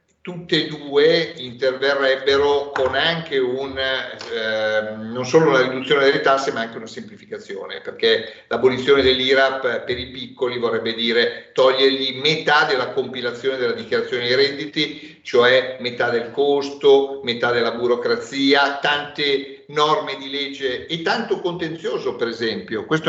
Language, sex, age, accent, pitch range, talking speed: Italian, male, 50-69, native, 130-175 Hz, 135 wpm